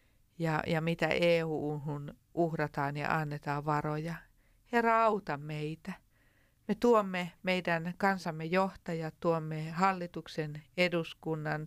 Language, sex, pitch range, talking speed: Finnish, female, 150-180 Hz, 100 wpm